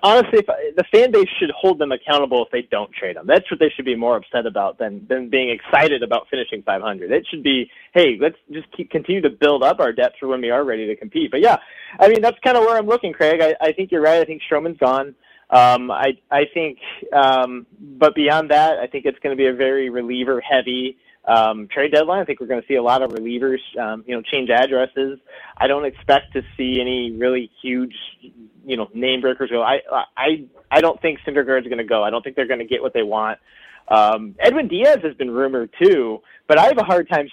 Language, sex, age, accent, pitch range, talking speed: English, male, 20-39, American, 125-165 Hz, 245 wpm